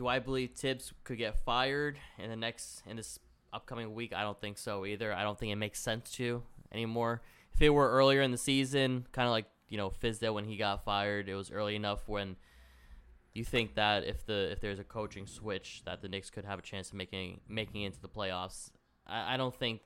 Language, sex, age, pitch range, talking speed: English, male, 10-29, 95-120 Hz, 235 wpm